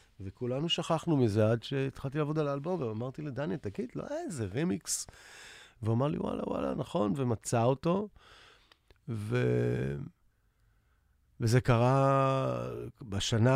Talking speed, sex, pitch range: 120 wpm, male, 100-120 Hz